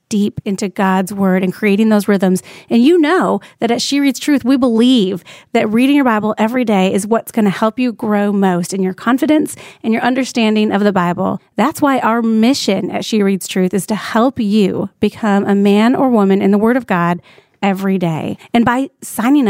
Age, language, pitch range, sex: 30-49, English, 200-250 Hz, female